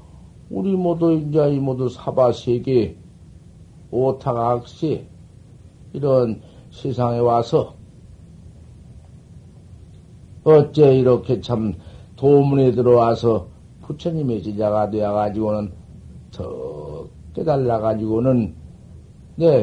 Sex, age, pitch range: male, 50-69, 105-165 Hz